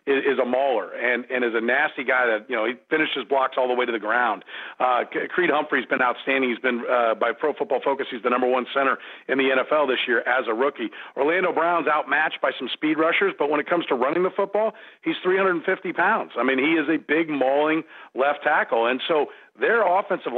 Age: 40-59